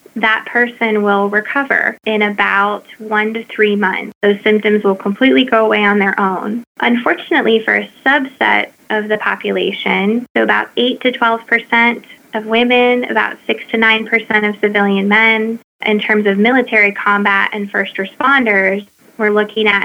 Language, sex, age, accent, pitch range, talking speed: English, female, 20-39, American, 200-225 Hz, 160 wpm